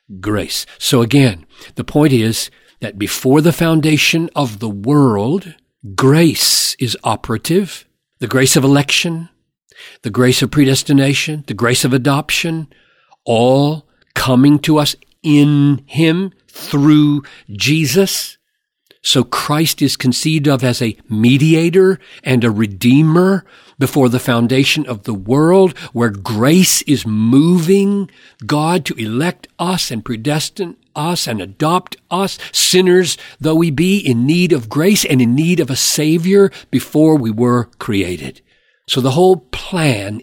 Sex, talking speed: male, 135 wpm